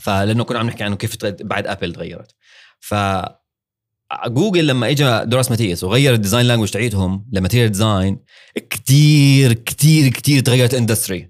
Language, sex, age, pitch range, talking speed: Arabic, male, 30-49, 100-130 Hz, 145 wpm